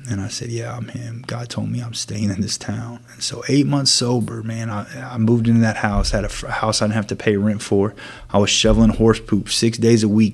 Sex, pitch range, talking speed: male, 105-120 Hz, 265 wpm